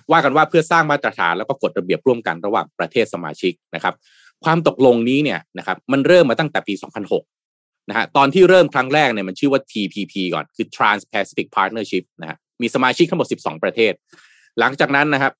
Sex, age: male, 20-39